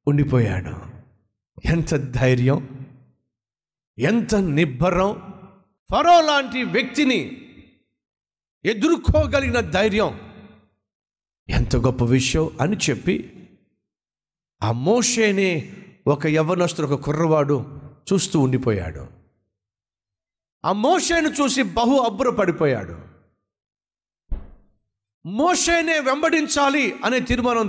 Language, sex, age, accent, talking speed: Telugu, male, 50-69, native, 70 wpm